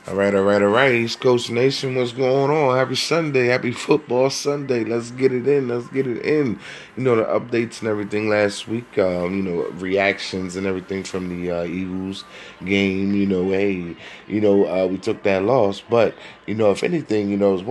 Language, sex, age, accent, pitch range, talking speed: English, male, 20-39, American, 90-115 Hz, 215 wpm